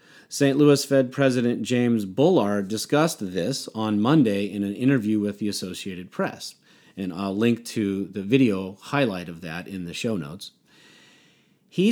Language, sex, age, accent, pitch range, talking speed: English, male, 40-59, American, 100-135 Hz, 155 wpm